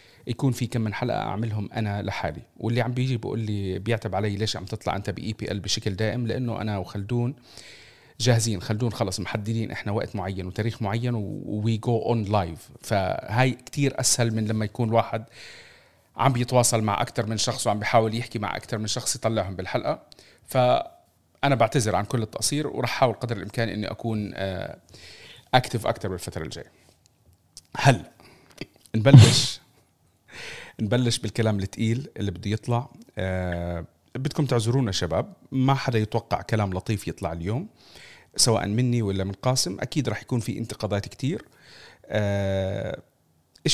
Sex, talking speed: male, 150 wpm